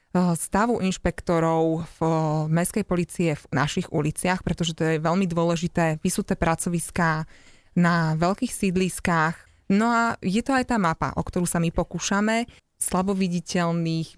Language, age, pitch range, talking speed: Slovak, 20-39, 165-190 Hz, 130 wpm